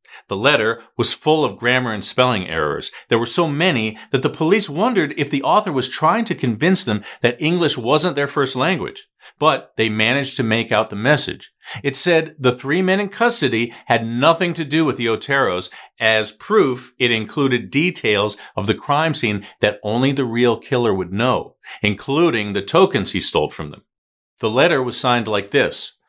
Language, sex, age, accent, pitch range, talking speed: English, male, 40-59, American, 115-155 Hz, 190 wpm